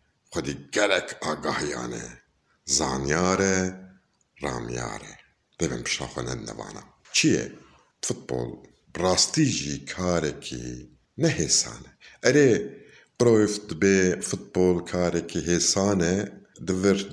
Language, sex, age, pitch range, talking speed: Turkish, male, 50-69, 80-115 Hz, 85 wpm